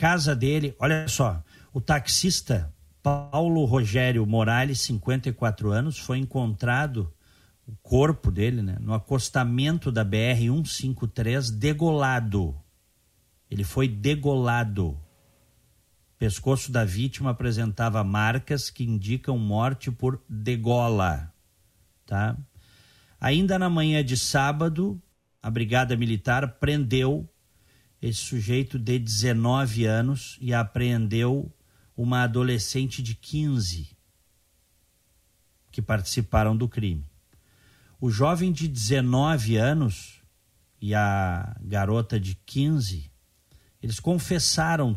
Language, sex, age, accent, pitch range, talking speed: Portuguese, male, 50-69, Brazilian, 105-135 Hz, 95 wpm